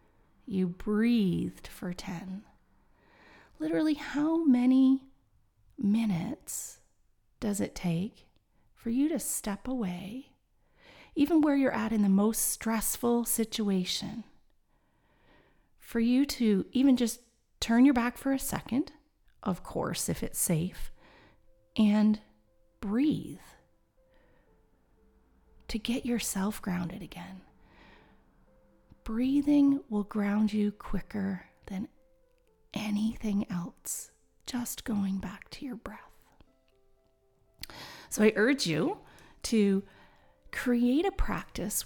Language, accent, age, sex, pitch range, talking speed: English, American, 30-49, female, 185-255 Hz, 100 wpm